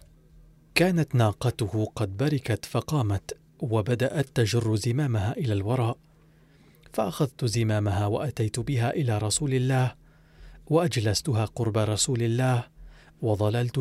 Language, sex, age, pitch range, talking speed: Arabic, male, 40-59, 105-135 Hz, 95 wpm